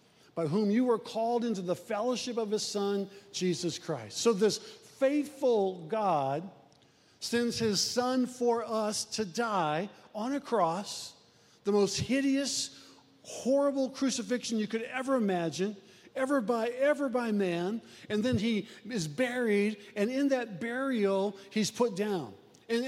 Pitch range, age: 205-255 Hz, 50-69